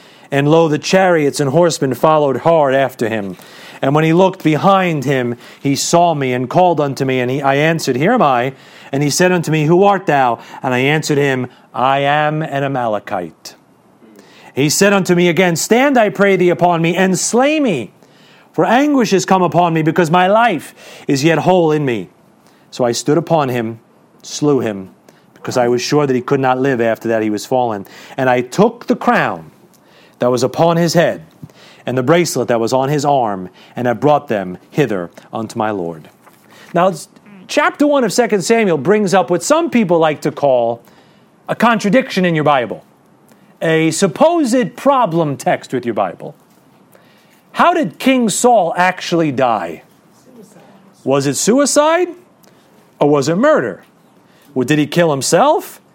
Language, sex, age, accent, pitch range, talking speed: English, male, 40-59, American, 130-190 Hz, 175 wpm